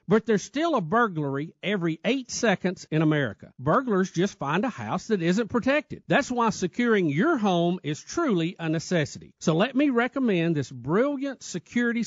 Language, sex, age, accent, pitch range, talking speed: English, male, 50-69, American, 155-230 Hz, 170 wpm